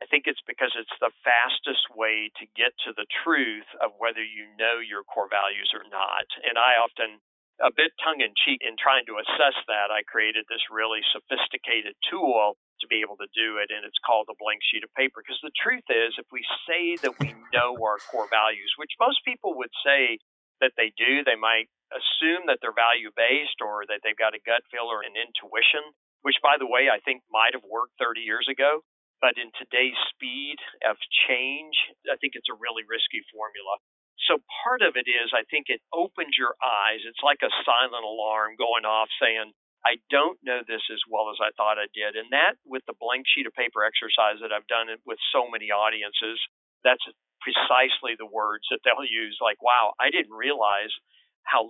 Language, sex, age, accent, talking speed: English, male, 40-59, American, 205 wpm